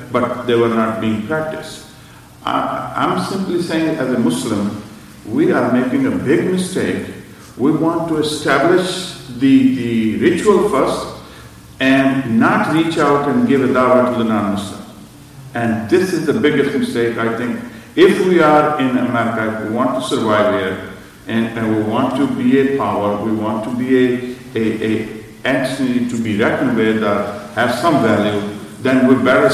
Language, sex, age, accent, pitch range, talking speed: English, male, 50-69, Indian, 110-140 Hz, 170 wpm